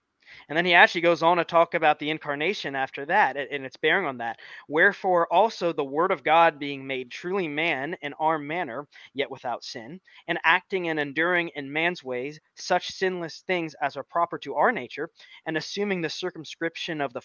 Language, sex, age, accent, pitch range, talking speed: English, male, 20-39, American, 140-175 Hz, 195 wpm